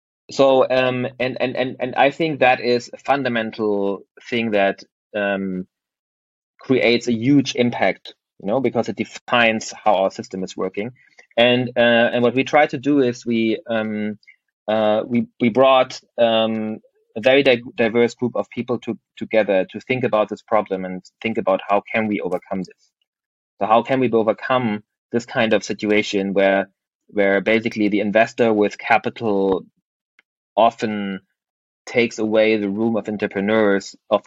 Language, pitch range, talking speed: English, 105-120 Hz, 160 wpm